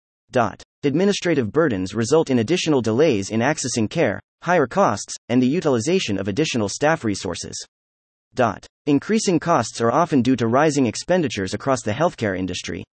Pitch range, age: 105-155 Hz, 30-49